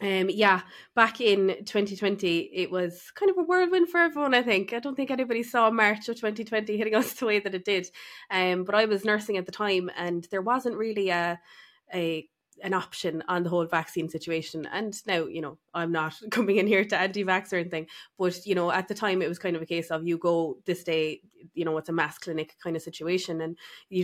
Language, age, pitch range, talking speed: English, 20-39, 170-200 Hz, 230 wpm